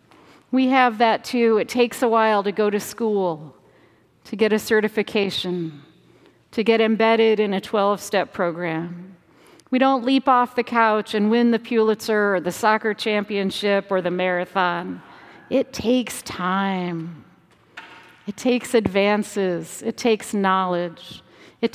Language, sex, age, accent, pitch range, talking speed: English, female, 50-69, American, 185-225 Hz, 140 wpm